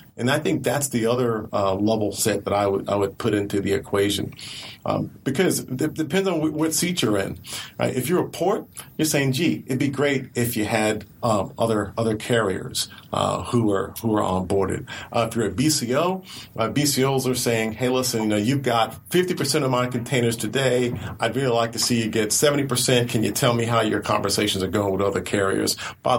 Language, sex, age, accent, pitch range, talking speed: English, male, 40-59, American, 105-130 Hz, 220 wpm